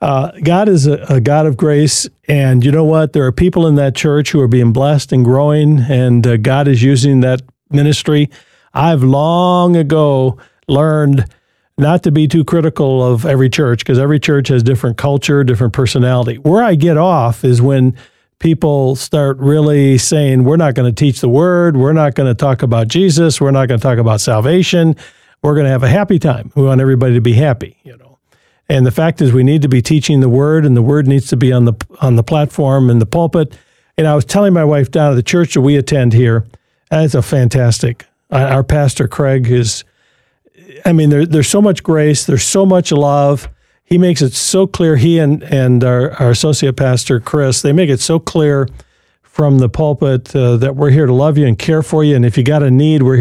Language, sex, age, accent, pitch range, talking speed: English, male, 50-69, American, 130-155 Hz, 215 wpm